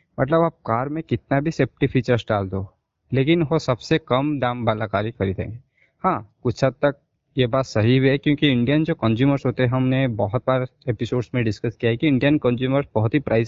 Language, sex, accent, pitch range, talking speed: Hindi, male, native, 120-155 Hz, 220 wpm